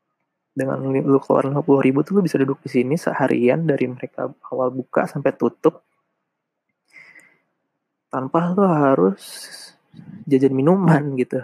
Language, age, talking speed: Indonesian, 20-39, 125 wpm